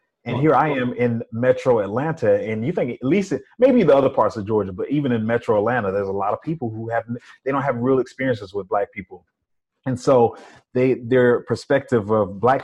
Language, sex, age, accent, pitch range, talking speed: English, male, 30-49, American, 110-130 Hz, 220 wpm